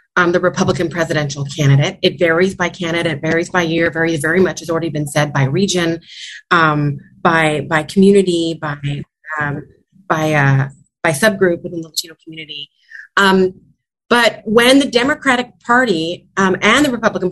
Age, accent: 30-49, American